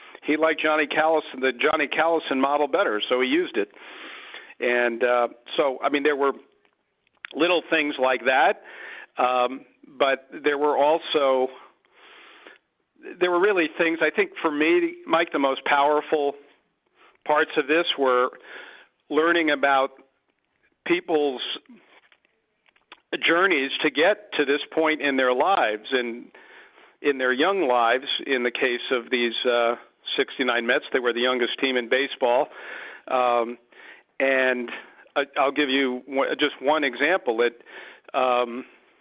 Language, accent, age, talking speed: English, American, 50-69, 135 wpm